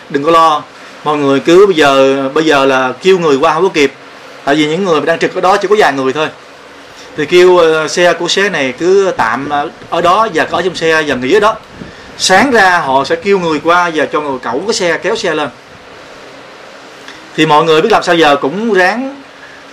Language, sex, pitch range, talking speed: Vietnamese, male, 155-210 Hz, 225 wpm